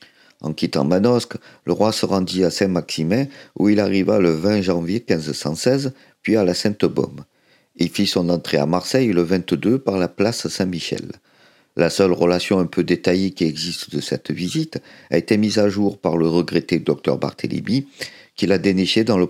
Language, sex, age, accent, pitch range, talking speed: French, male, 50-69, French, 85-105 Hz, 180 wpm